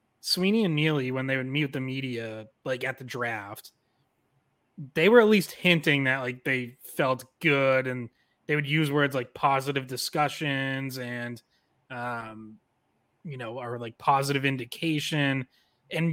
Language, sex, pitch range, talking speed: English, male, 130-160 Hz, 155 wpm